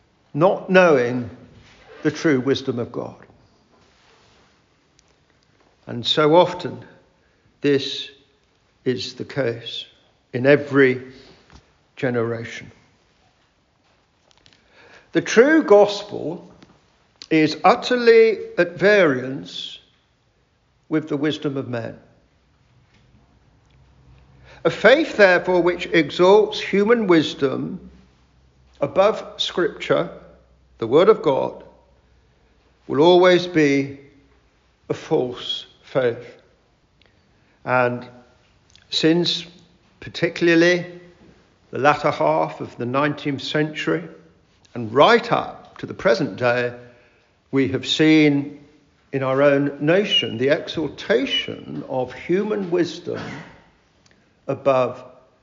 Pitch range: 125-175 Hz